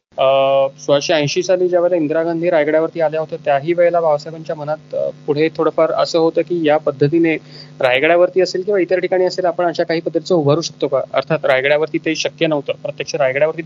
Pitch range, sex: 145-175 Hz, male